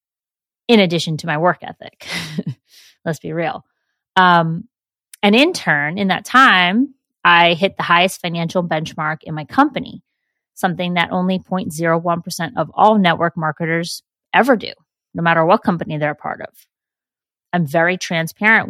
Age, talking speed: 30-49, 145 wpm